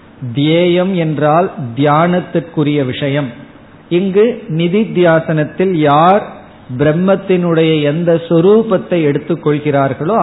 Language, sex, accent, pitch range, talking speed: Tamil, male, native, 135-165 Hz, 65 wpm